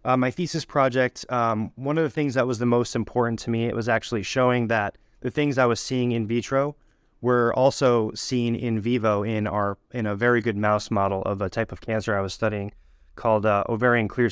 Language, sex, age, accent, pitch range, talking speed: English, male, 20-39, American, 110-130 Hz, 220 wpm